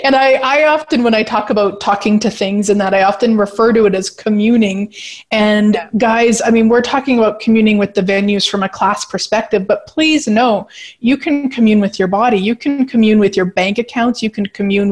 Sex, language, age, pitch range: female, English, 30-49, 200-235 Hz